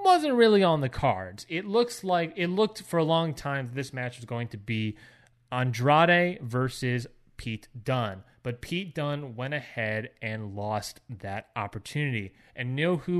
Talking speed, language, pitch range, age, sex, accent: 165 wpm, English, 115-160 Hz, 30-49, male, American